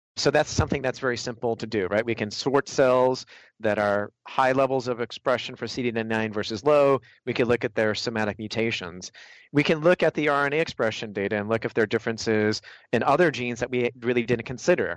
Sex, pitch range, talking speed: male, 115-135 Hz, 215 wpm